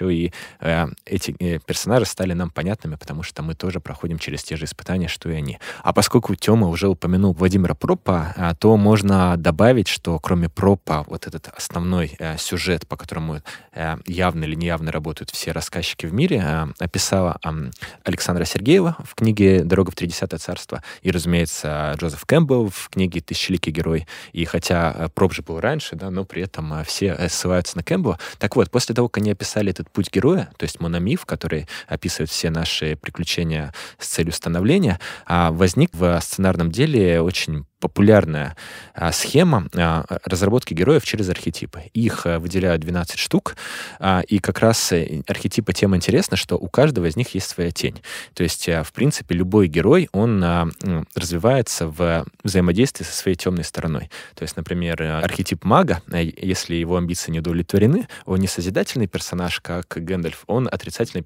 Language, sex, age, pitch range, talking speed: Russian, male, 20-39, 80-95 Hz, 165 wpm